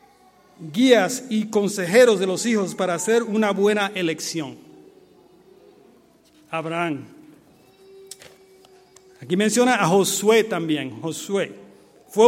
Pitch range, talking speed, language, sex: 185-240 Hz, 95 wpm, Spanish, male